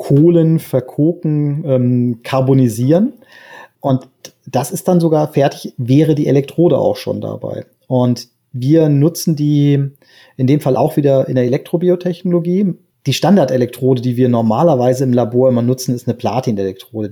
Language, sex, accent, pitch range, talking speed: German, male, German, 125-155 Hz, 140 wpm